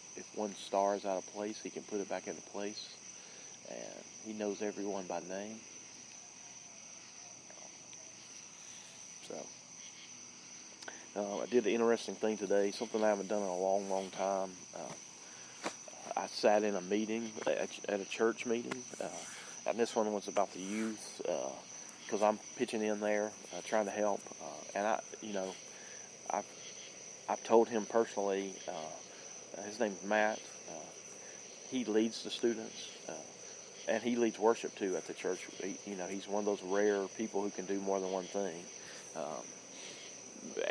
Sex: male